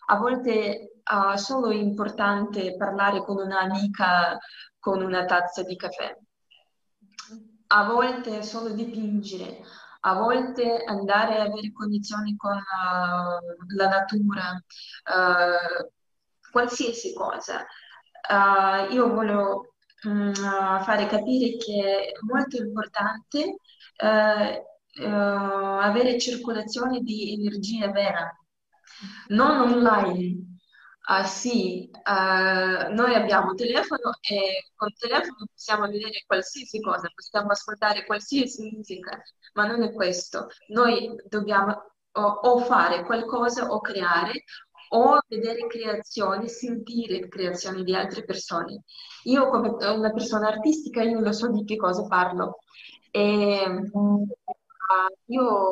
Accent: native